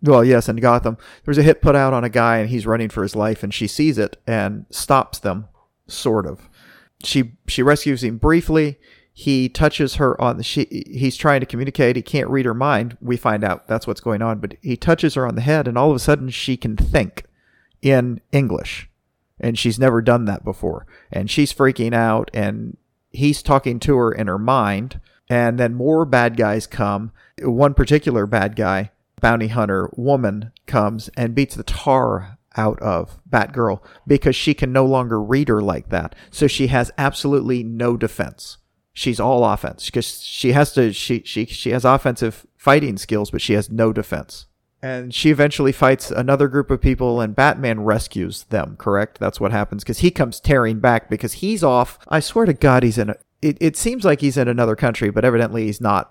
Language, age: English, 40-59